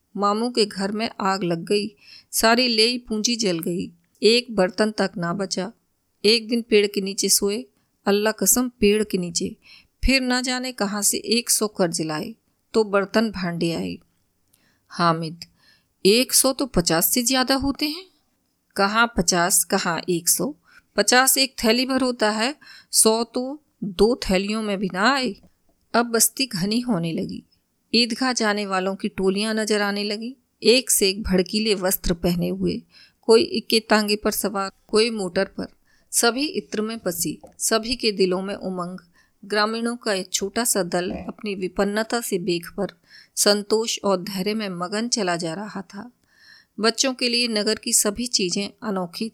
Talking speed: 165 wpm